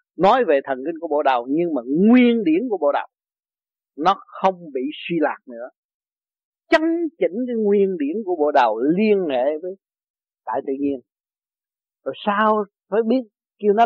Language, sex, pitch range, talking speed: Vietnamese, male, 160-230 Hz, 175 wpm